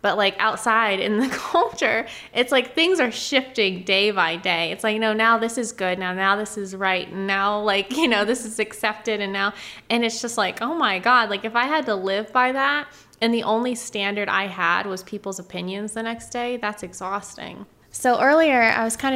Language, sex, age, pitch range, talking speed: English, female, 20-39, 185-225 Hz, 220 wpm